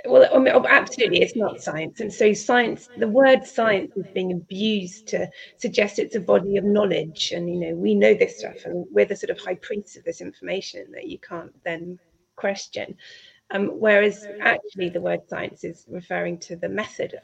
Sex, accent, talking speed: female, British, 190 wpm